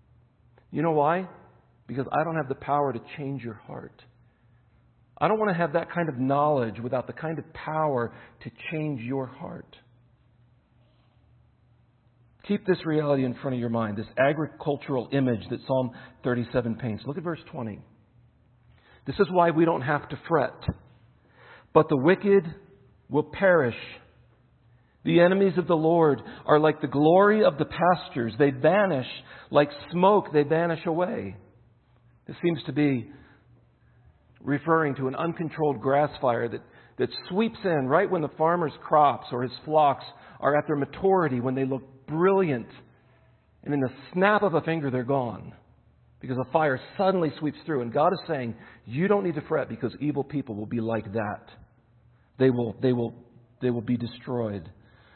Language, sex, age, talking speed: English, male, 50-69, 165 wpm